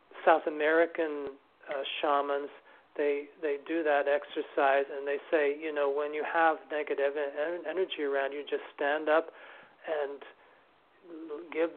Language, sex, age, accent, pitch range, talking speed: English, male, 40-59, American, 140-160 Hz, 135 wpm